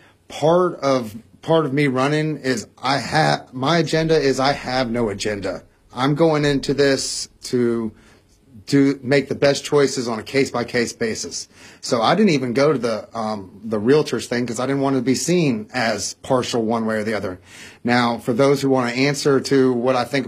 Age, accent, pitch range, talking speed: 30-49, American, 115-140 Hz, 195 wpm